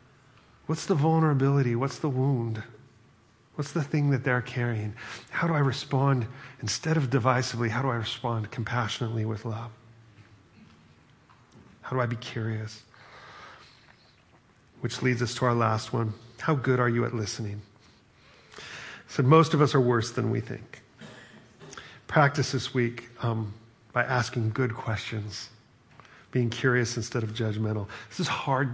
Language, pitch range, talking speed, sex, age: English, 115-140 Hz, 145 wpm, male, 40-59